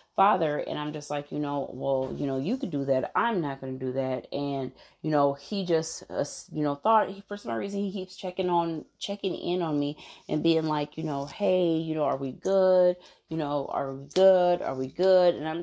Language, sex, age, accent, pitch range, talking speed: English, female, 30-49, American, 150-185 Hz, 235 wpm